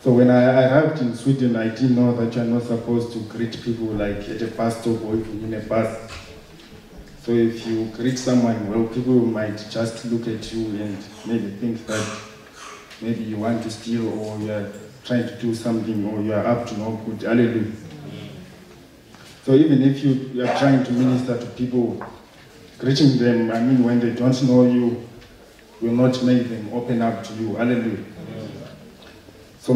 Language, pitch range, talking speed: English, 115-125 Hz, 185 wpm